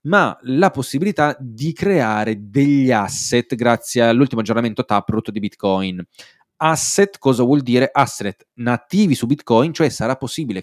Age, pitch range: 20-39, 110-145 Hz